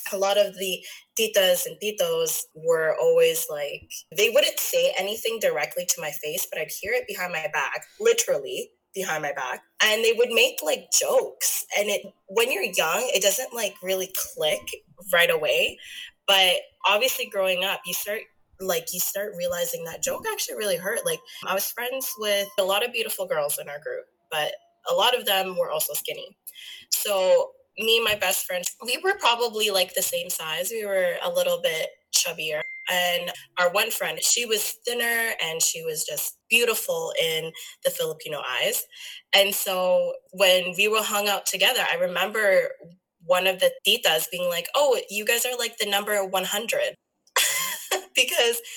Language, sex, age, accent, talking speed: English, female, 20-39, American, 175 wpm